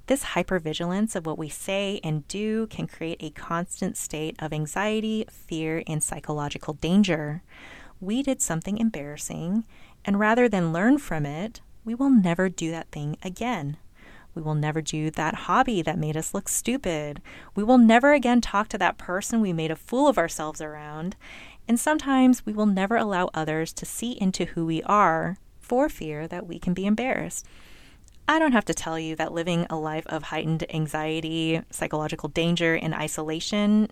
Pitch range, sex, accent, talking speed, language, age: 160-215 Hz, female, American, 175 wpm, English, 30-49